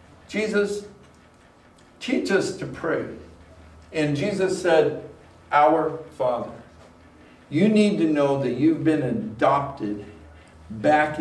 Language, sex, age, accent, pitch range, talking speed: English, male, 60-79, American, 120-150 Hz, 100 wpm